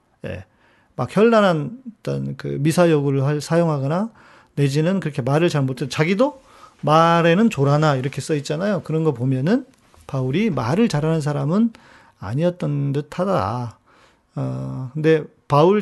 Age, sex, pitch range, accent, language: 40-59, male, 135-180 Hz, native, Korean